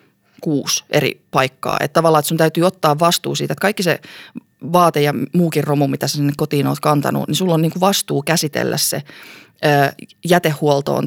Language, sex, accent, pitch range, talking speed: Finnish, female, native, 145-165 Hz, 175 wpm